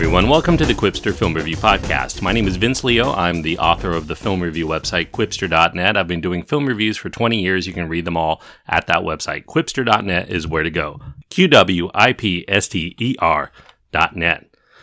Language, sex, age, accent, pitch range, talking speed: English, male, 40-59, American, 95-130 Hz, 180 wpm